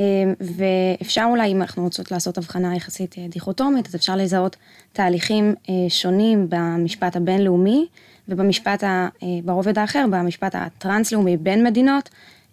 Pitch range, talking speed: 180-205 Hz, 120 wpm